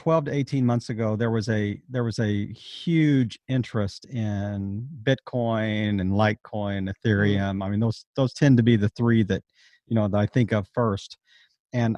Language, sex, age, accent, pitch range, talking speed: English, male, 50-69, American, 105-130 Hz, 180 wpm